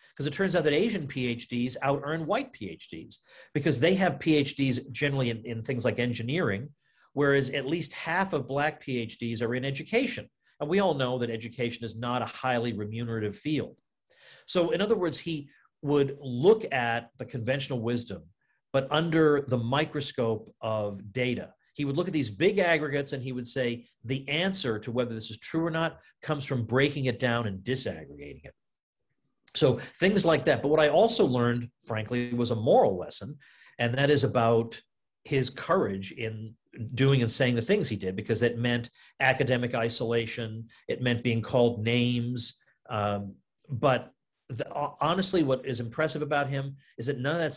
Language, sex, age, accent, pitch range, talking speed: English, male, 40-59, American, 120-150 Hz, 175 wpm